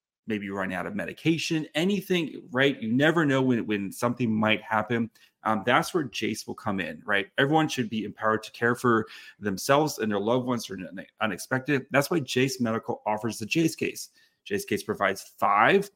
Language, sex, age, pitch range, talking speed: English, male, 30-49, 110-140 Hz, 185 wpm